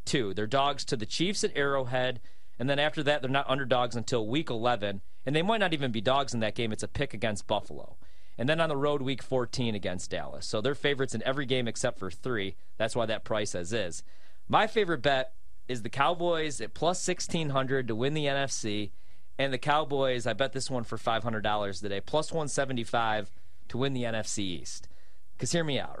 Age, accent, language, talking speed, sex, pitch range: 30-49, American, English, 210 wpm, male, 115-150 Hz